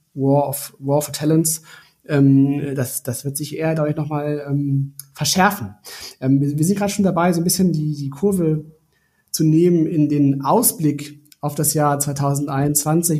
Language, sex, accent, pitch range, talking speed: German, male, German, 145-175 Hz, 175 wpm